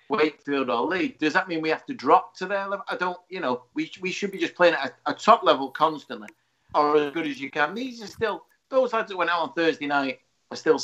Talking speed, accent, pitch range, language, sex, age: 265 wpm, British, 115-155 Hz, English, male, 50-69